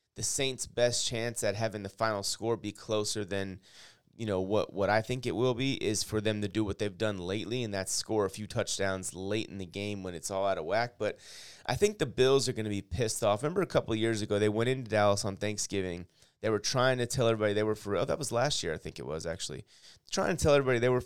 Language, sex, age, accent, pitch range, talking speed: English, male, 30-49, American, 100-120 Hz, 270 wpm